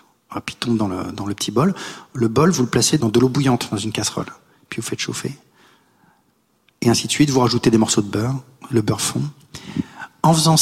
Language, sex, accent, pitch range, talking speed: French, male, French, 130-175 Hz, 230 wpm